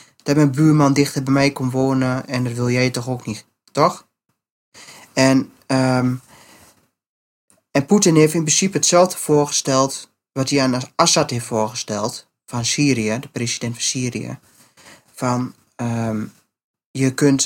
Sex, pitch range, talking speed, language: male, 120-145 Hz, 140 wpm, Dutch